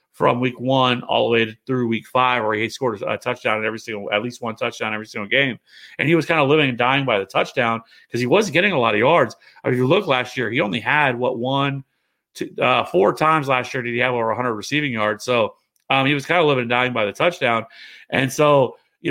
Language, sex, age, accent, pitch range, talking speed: English, male, 30-49, American, 115-135 Hz, 265 wpm